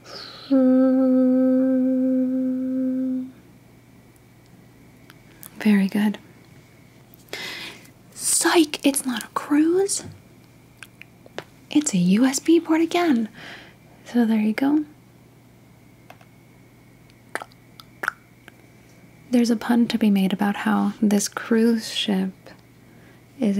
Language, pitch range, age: English, 200-255 Hz, 20-39